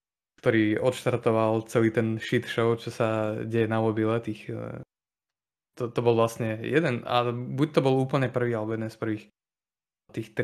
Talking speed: 160 wpm